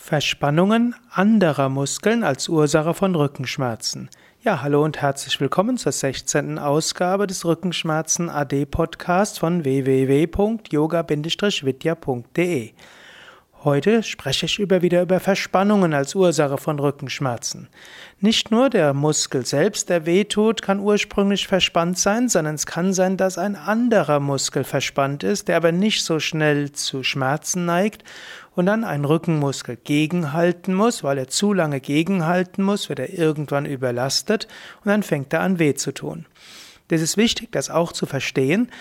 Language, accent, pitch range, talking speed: German, German, 145-190 Hz, 140 wpm